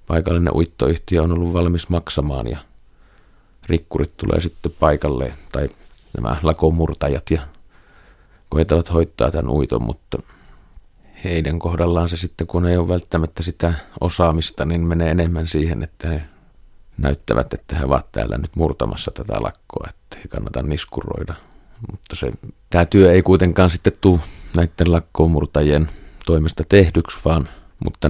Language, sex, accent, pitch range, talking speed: Finnish, male, native, 75-85 Hz, 135 wpm